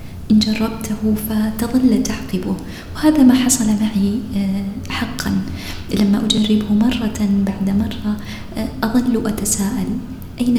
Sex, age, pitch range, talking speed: female, 20-39, 205-255 Hz, 95 wpm